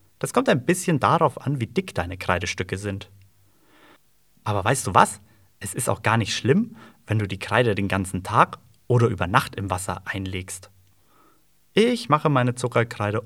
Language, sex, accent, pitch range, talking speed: German, male, German, 100-140 Hz, 170 wpm